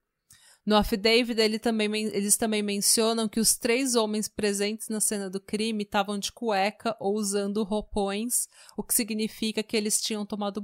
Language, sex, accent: Portuguese, female, Brazilian